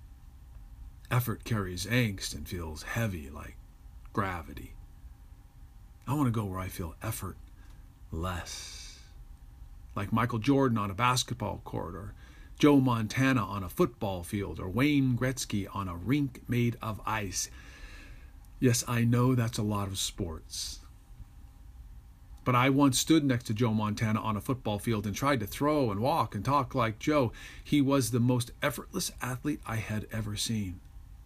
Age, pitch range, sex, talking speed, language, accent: 50-69, 95-125 Hz, male, 155 wpm, English, American